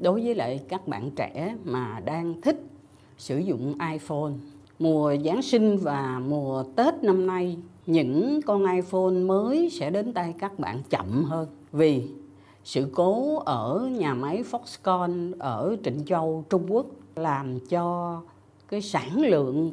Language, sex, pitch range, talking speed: Vietnamese, female, 140-215 Hz, 145 wpm